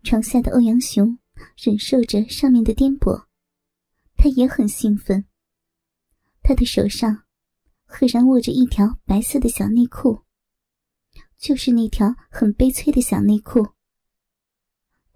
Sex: male